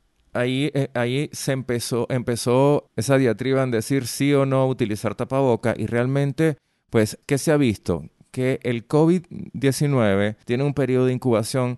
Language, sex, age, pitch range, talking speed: Spanish, male, 30-49, 100-130 Hz, 150 wpm